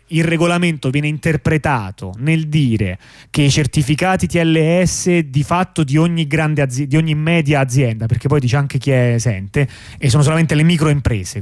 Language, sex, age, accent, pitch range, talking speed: Italian, male, 30-49, native, 130-170 Hz, 170 wpm